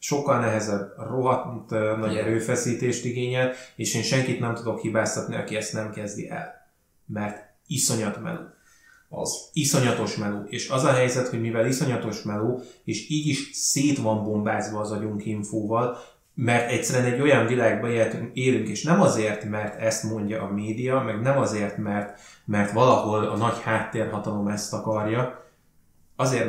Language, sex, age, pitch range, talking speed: Hungarian, male, 20-39, 105-125 Hz, 150 wpm